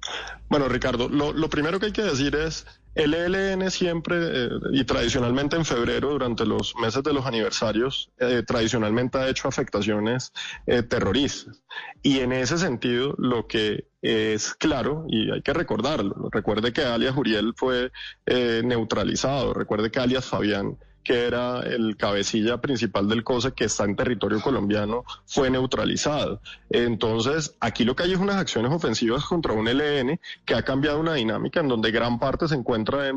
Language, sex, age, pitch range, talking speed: Spanish, male, 20-39, 115-145 Hz, 165 wpm